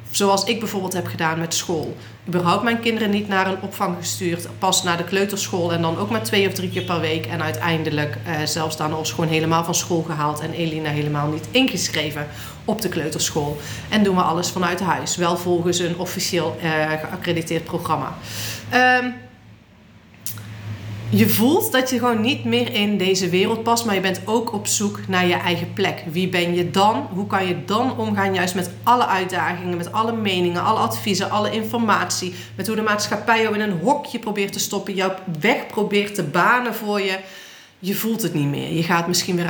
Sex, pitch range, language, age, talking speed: female, 170-215 Hz, Dutch, 40-59, 200 wpm